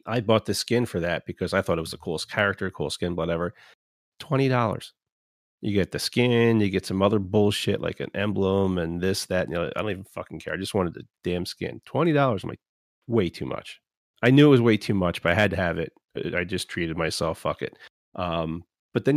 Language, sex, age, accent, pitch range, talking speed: English, male, 30-49, American, 90-110 Hz, 230 wpm